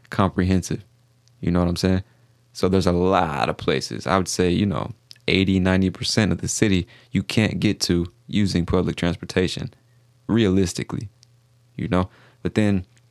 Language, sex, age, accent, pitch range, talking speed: English, male, 20-39, American, 90-120 Hz, 155 wpm